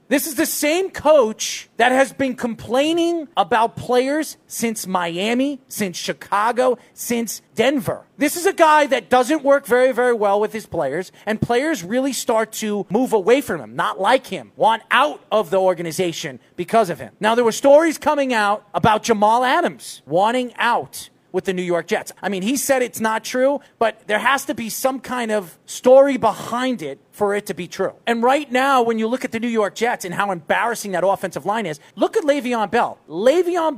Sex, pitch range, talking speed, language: male, 215-280 Hz, 200 wpm, English